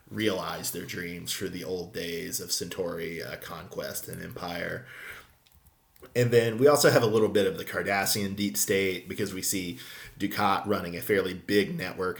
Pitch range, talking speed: 95-110 Hz, 170 wpm